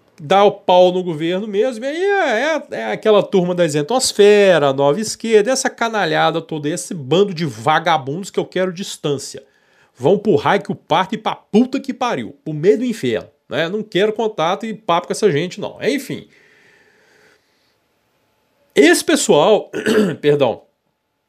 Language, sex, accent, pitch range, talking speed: Portuguese, male, Brazilian, 190-280 Hz, 160 wpm